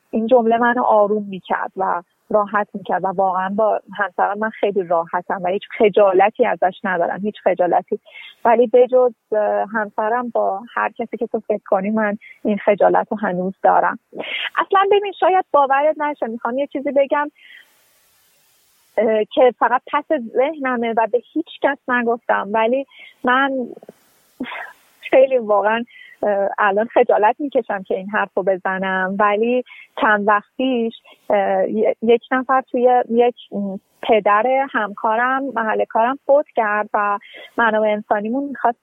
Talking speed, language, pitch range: 130 wpm, Persian, 210-255 Hz